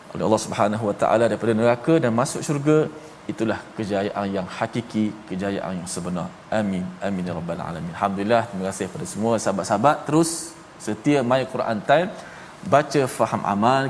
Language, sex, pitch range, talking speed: Malayalam, male, 105-135 Hz, 145 wpm